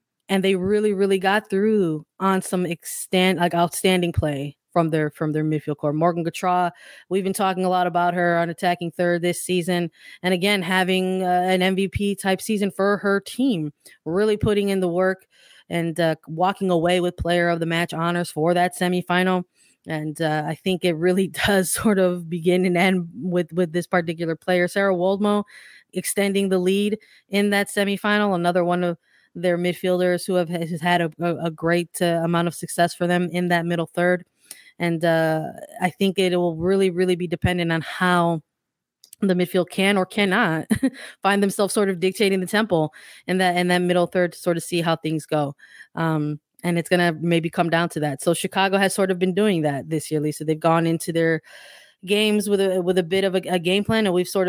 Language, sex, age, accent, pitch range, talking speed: English, female, 20-39, American, 170-190 Hz, 205 wpm